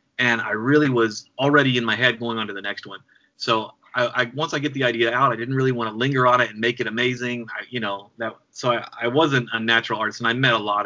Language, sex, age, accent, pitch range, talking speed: English, male, 30-49, American, 110-135 Hz, 280 wpm